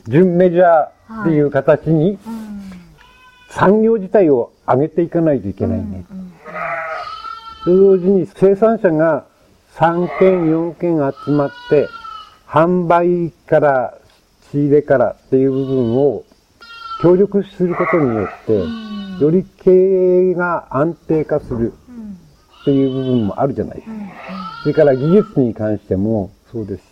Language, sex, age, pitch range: Japanese, male, 50-69, 140-195 Hz